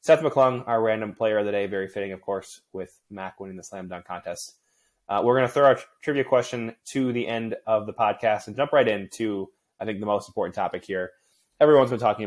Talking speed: 230 wpm